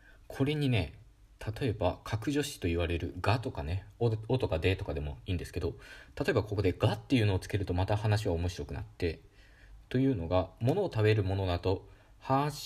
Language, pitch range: Japanese, 95-120 Hz